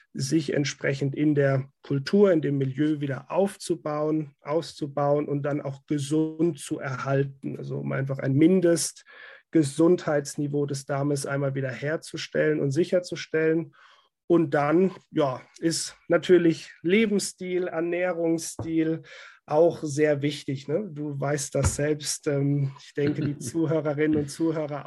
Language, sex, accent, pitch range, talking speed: German, male, German, 145-165 Hz, 125 wpm